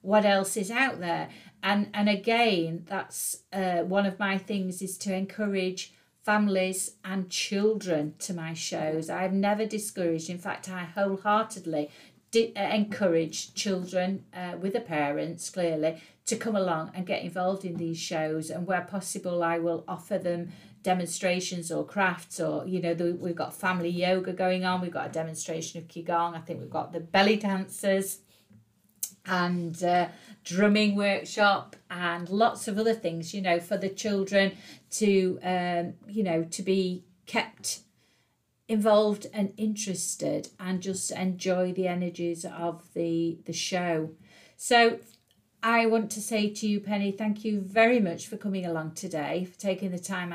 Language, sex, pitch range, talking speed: English, female, 170-200 Hz, 160 wpm